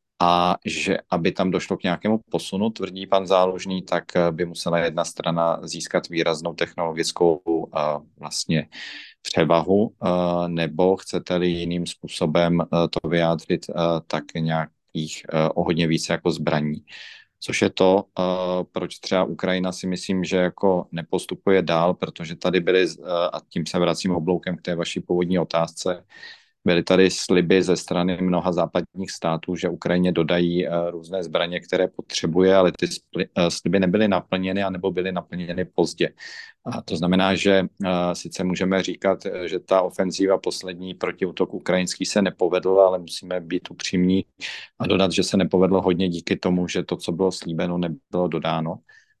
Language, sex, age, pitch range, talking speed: Slovak, male, 40-59, 85-95 Hz, 145 wpm